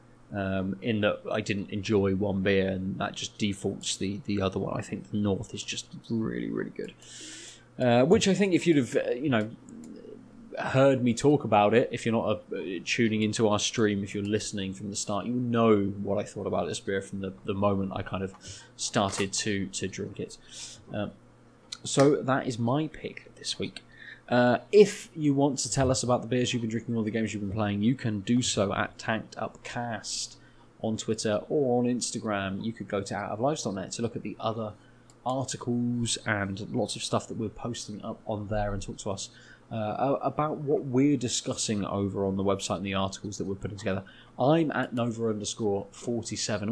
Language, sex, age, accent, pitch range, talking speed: English, male, 20-39, British, 100-125 Hz, 200 wpm